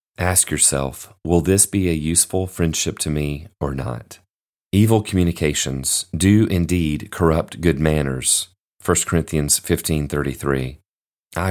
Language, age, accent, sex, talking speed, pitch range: English, 30-49, American, male, 115 wpm, 80-95 Hz